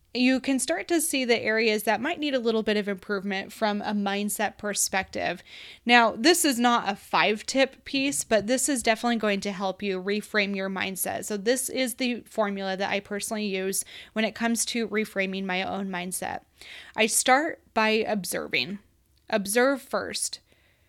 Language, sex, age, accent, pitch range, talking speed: English, female, 20-39, American, 205-250 Hz, 175 wpm